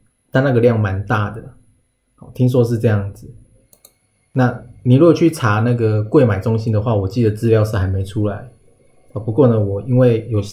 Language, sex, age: Chinese, male, 20-39